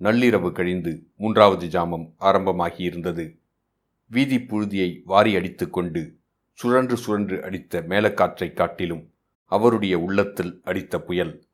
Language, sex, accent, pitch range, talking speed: Tamil, male, native, 90-110 Hz, 90 wpm